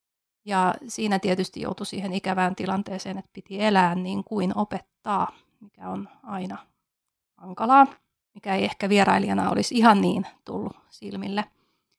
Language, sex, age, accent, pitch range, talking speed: Finnish, female, 30-49, native, 190-215 Hz, 130 wpm